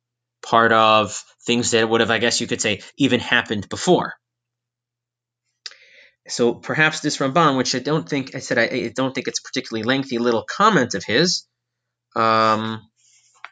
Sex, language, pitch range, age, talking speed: male, English, 115-135 Hz, 30-49, 165 wpm